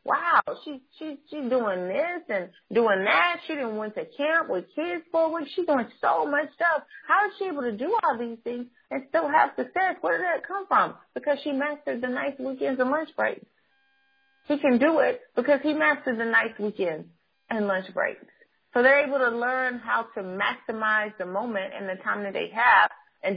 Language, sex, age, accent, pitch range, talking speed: English, female, 30-49, American, 210-290 Hz, 210 wpm